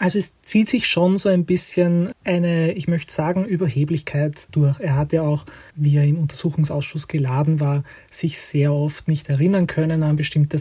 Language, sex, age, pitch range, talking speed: German, male, 20-39, 150-180 Hz, 180 wpm